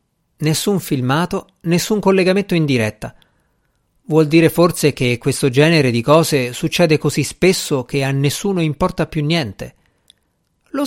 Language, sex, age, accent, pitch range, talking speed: Italian, male, 50-69, native, 130-190 Hz, 130 wpm